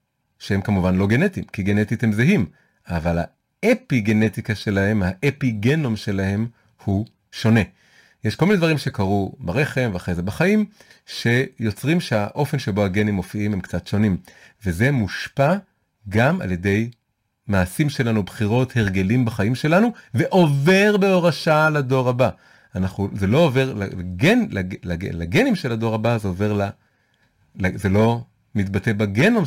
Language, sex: Hebrew, male